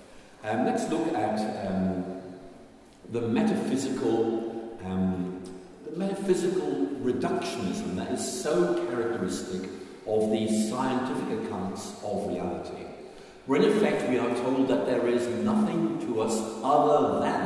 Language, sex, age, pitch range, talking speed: Danish, male, 50-69, 110-135 Hz, 120 wpm